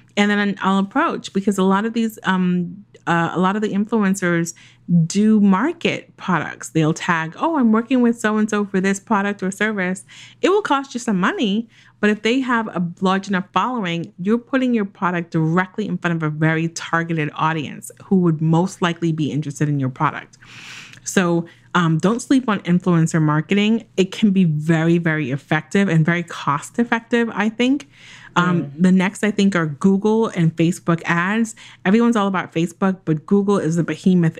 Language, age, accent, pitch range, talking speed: English, 30-49, American, 160-205 Hz, 185 wpm